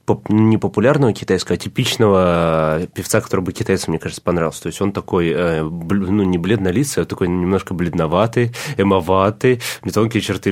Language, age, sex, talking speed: Russian, 20-39, male, 155 wpm